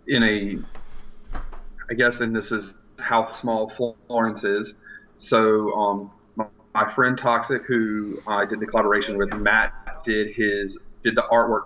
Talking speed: 155 wpm